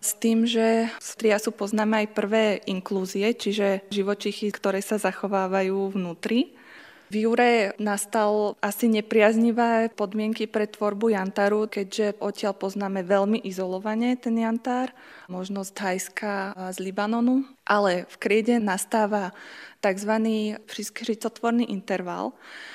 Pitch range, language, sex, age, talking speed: 195-225 Hz, Czech, female, 20-39, 110 wpm